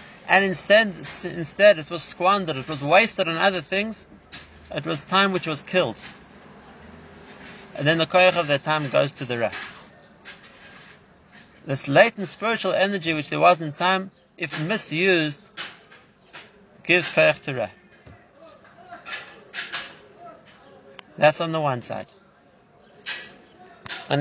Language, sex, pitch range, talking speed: English, male, 150-195 Hz, 125 wpm